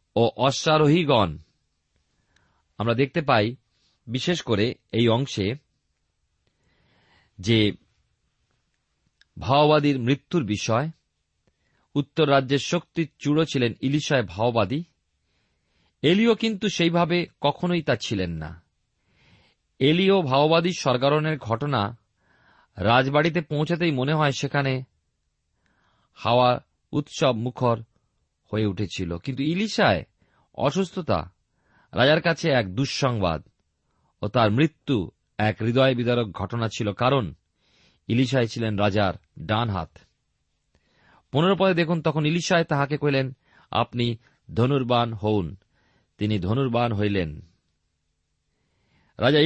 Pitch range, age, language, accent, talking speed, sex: 105-150 Hz, 40-59, Bengali, native, 90 wpm, male